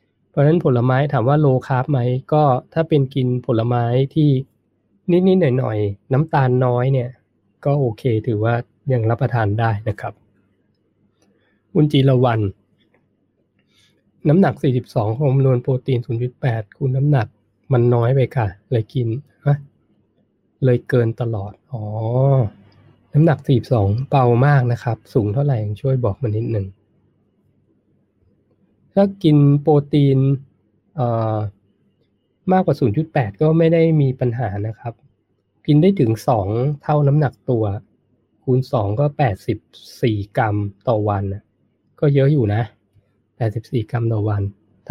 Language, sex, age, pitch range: Thai, male, 20-39, 110-140 Hz